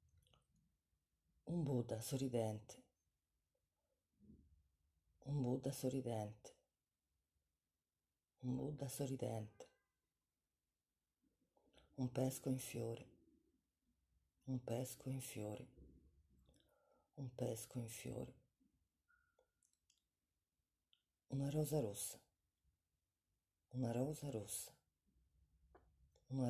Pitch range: 75-130 Hz